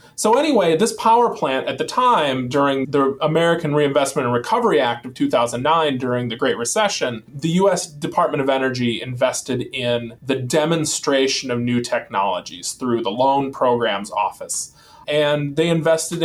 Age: 20-39